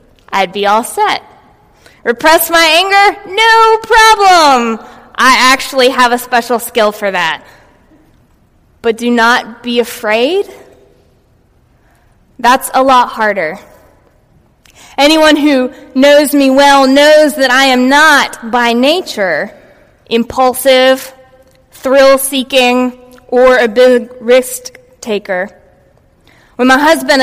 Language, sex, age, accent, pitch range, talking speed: English, female, 20-39, American, 240-305 Hz, 105 wpm